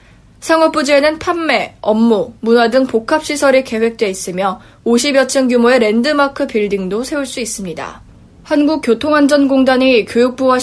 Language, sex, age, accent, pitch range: Korean, female, 20-39, native, 225-285 Hz